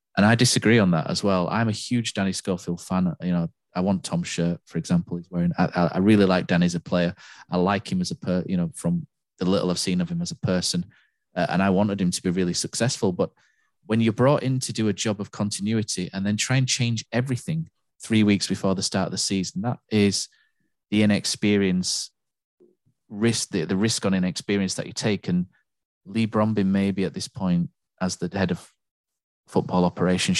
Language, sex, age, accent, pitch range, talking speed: English, male, 30-49, British, 90-120 Hz, 215 wpm